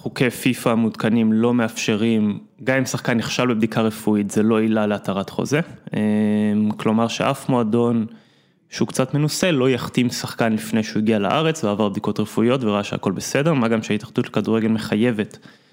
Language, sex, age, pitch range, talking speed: Hebrew, male, 20-39, 110-135 Hz, 155 wpm